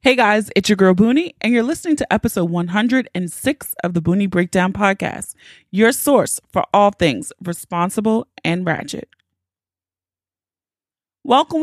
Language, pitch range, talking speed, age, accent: English, 185-270 Hz, 135 wpm, 30-49, American